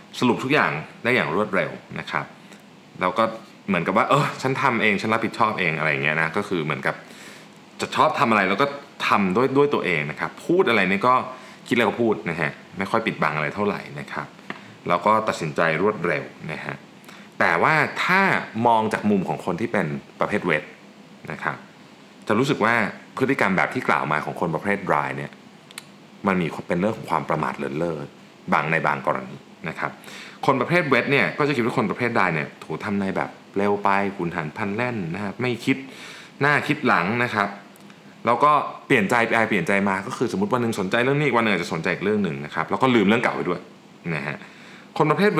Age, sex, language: 30-49, male, Thai